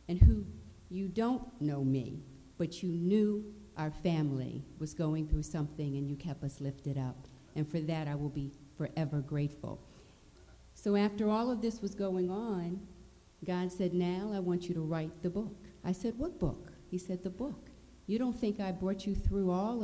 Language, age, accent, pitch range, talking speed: English, 50-69, American, 145-185 Hz, 190 wpm